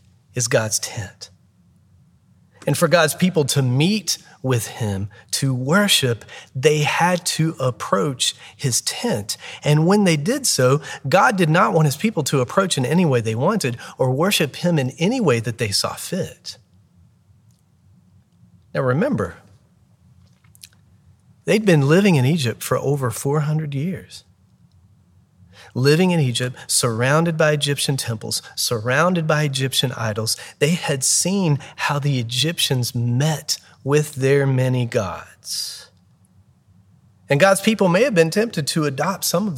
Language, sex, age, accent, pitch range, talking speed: English, male, 40-59, American, 125-170 Hz, 140 wpm